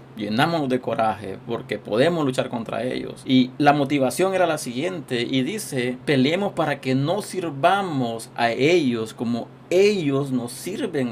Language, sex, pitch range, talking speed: Spanish, male, 125-150 Hz, 145 wpm